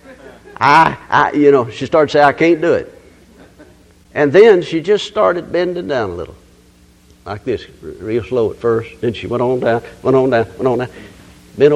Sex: male